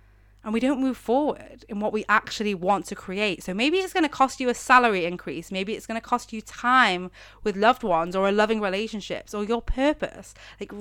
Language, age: English, 20-39